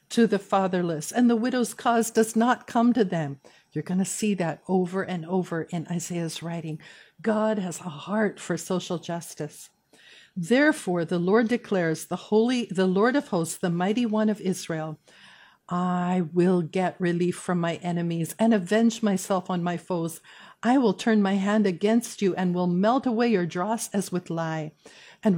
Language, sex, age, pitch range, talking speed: English, female, 50-69, 170-215 Hz, 175 wpm